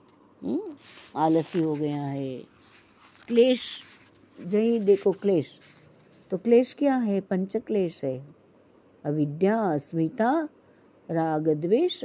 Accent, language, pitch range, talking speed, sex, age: native, Hindi, 170-240 Hz, 100 wpm, female, 60-79